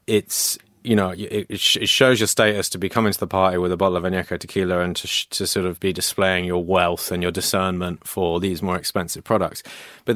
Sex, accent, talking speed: male, British, 235 wpm